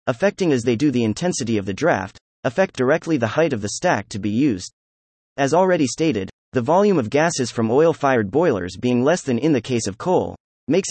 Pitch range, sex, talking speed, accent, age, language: 110-160 Hz, male, 210 wpm, American, 30-49, English